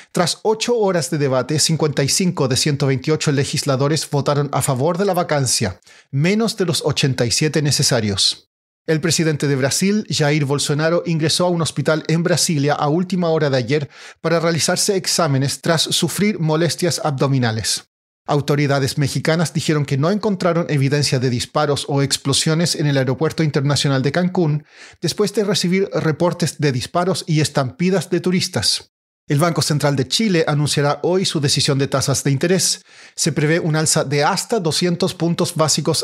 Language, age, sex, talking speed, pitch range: Spanish, 40-59, male, 155 wpm, 140-175 Hz